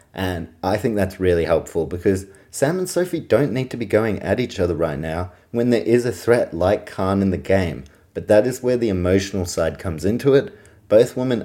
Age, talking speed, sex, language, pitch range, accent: 30-49, 220 wpm, male, English, 90-110 Hz, Australian